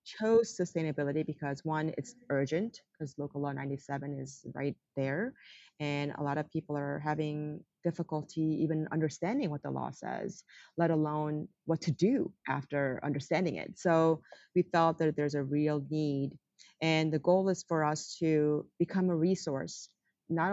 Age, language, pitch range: 30-49, English, 145-170 Hz